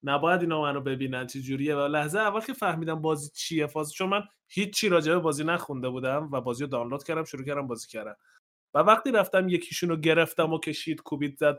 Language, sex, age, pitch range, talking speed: Persian, male, 20-39, 145-190 Hz, 210 wpm